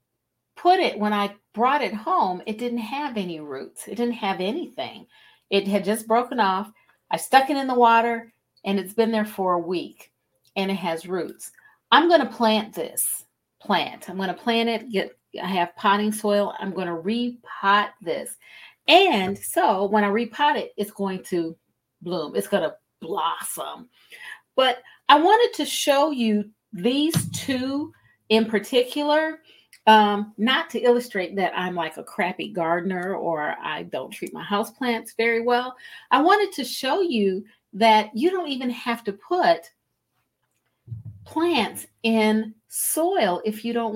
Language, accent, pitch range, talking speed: English, American, 190-255 Hz, 165 wpm